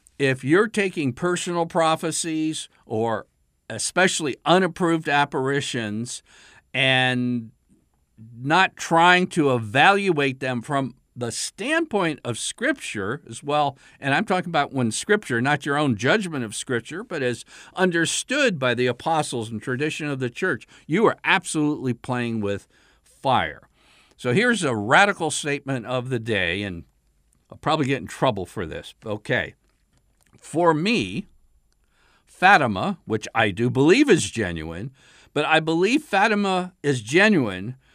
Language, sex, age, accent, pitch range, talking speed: English, male, 50-69, American, 125-175 Hz, 130 wpm